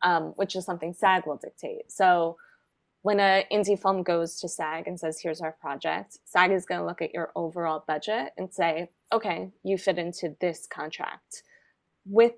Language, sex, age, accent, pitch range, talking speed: English, female, 20-39, American, 170-210 Hz, 180 wpm